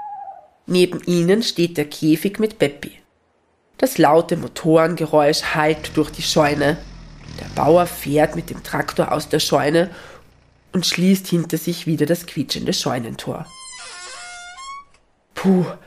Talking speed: 120 wpm